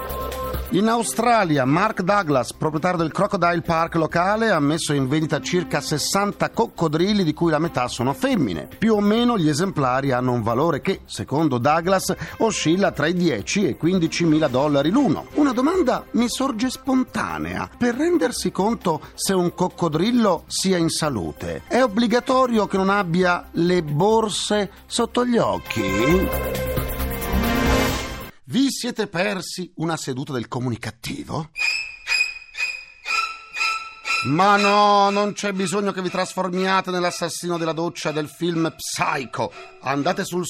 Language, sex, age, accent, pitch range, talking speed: Italian, male, 50-69, native, 125-200 Hz, 135 wpm